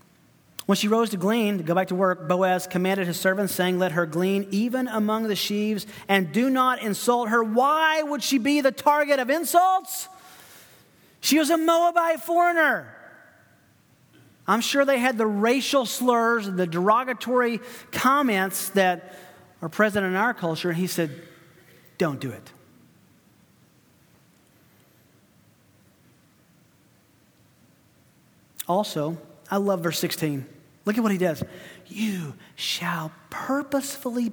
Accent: American